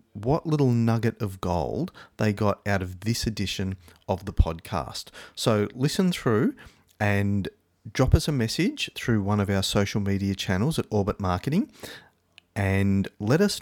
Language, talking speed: English, 155 wpm